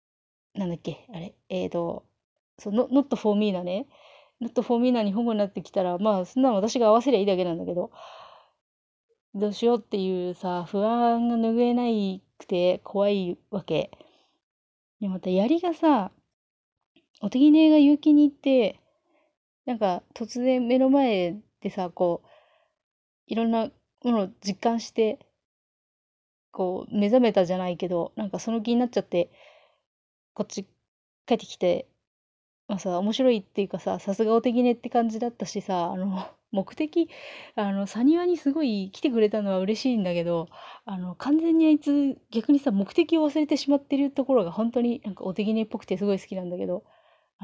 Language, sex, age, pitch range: Japanese, female, 30-49, 195-265 Hz